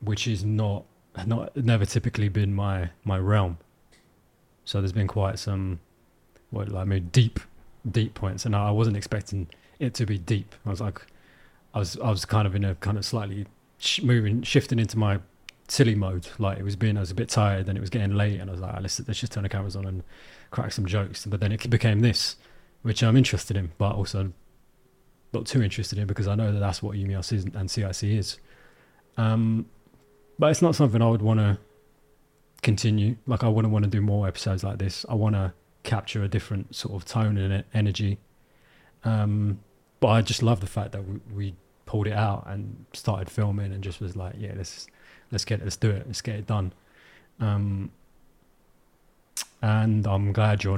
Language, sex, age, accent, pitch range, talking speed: English, male, 20-39, British, 95-110 Hz, 205 wpm